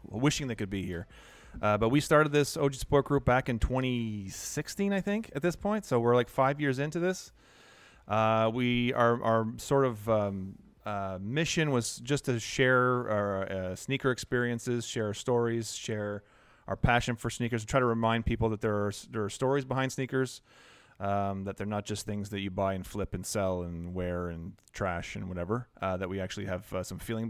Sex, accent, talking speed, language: male, American, 200 wpm, English